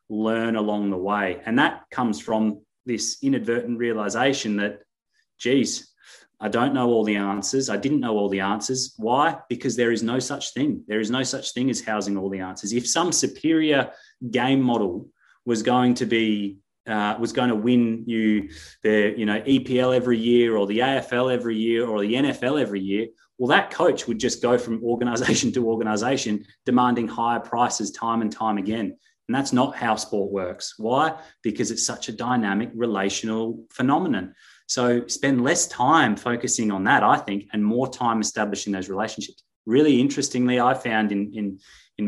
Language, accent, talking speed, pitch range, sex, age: English, Australian, 180 wpm, 105-125 Hz, male, 30-49